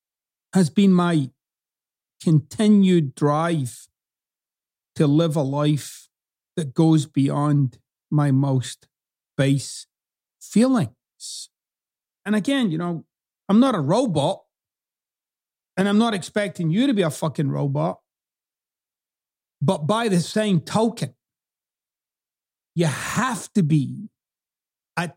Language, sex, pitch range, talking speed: English, male, 150-195 Hz, 105 wpm